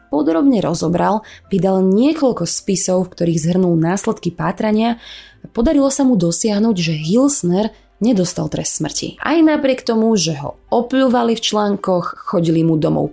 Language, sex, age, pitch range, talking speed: Slovak, female, 20-39, 175-220 Hz, 135 wpm